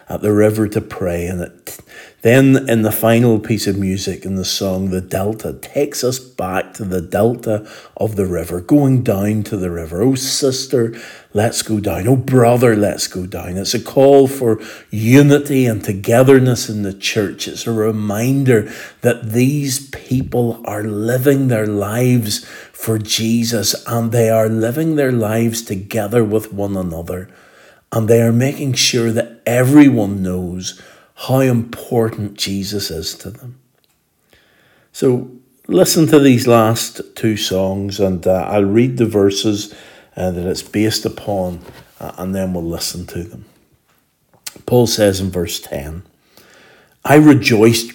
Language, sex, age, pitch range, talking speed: English, male, 50-69, 100-125 Hz, 150 wpm